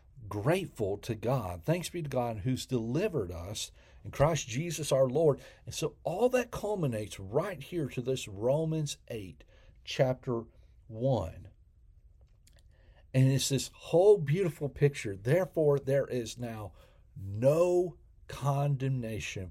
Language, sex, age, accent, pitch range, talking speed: English, male, 40-59, American, 105-155 Hz, 125 wpm